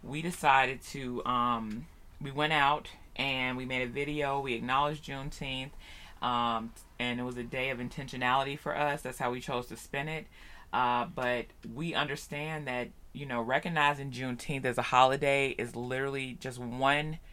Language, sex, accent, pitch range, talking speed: English, female, American, 120-145 Hz, 165 wpm